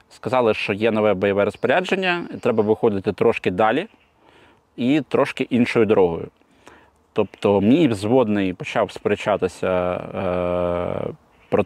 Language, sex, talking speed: Ukrainian, male, 110 wpm